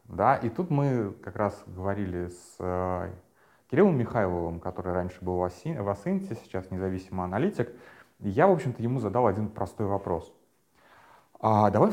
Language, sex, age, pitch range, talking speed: Russian, male, 30-49, 90-115 Hz, 135 wpm